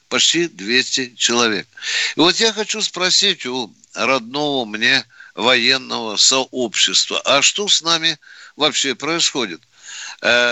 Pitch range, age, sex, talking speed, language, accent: 130-185 Hz, 60-79, male, 115 wpm, Russian, native